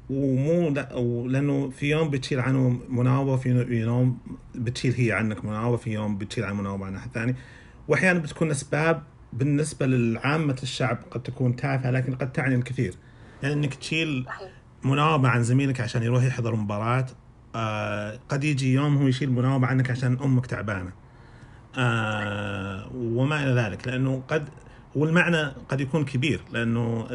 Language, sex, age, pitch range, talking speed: English, male, 40-59, 120-135 Hz, 105 wpm